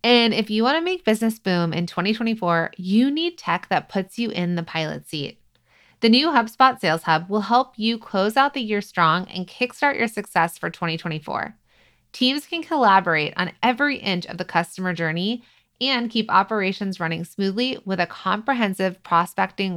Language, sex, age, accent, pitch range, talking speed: English, female, 30-49, American, 185-245 Hz, 175 wpm